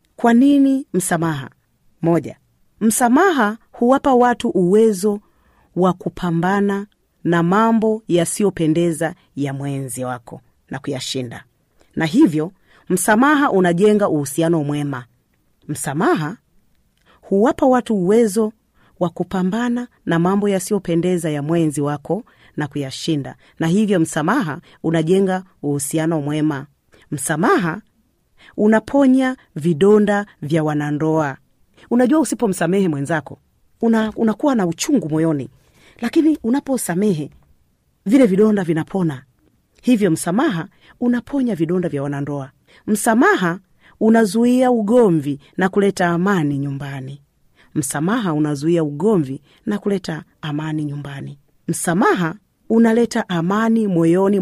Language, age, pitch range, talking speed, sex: Swahili, 40-59, 150-220 Hz, 100 wpm, female